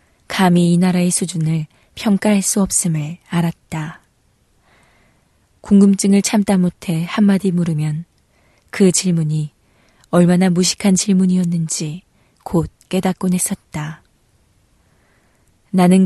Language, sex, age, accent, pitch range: Korean, female, 20-39, native, 165-190 Hz